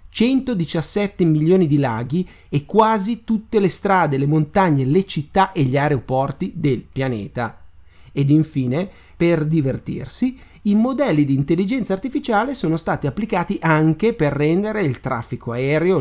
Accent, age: native, 30-49